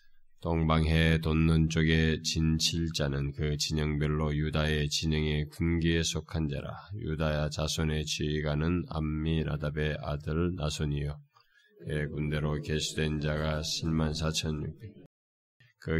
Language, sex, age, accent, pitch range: Korean, male, 20-39, native, 75-85 Hz